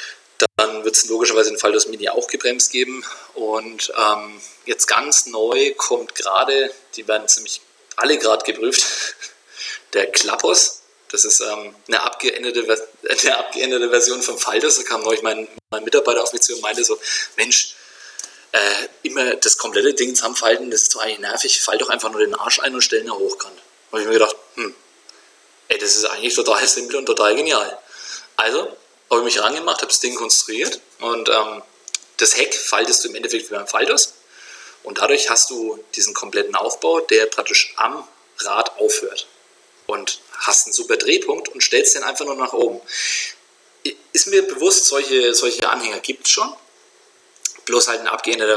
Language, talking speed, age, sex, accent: German, 175 wpm, 20-39, male, German